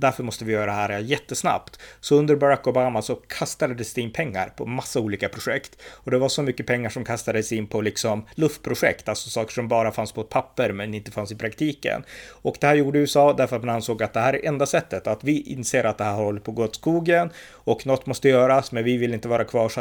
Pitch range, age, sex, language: 110-135 Hz, 30-49, male, Swedish